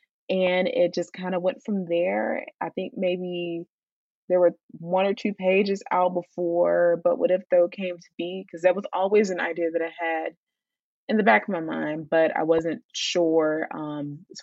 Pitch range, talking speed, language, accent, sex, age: 165-225 Hz, 195 wpm, English, American, female, 20-39